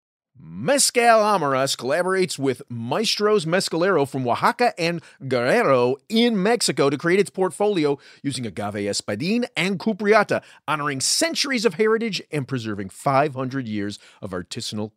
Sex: male